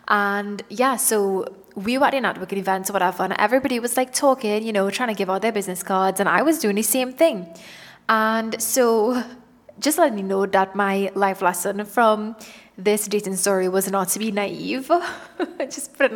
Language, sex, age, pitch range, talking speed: English, female, 20-39, 200-240 Hz, 200 wpm